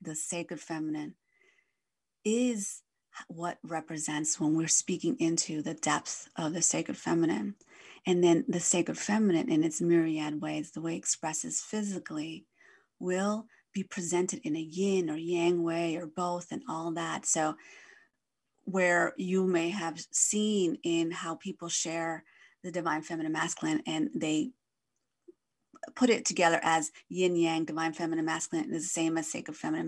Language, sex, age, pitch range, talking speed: English, female, 30-49, 160-200 Hz, 150 wpm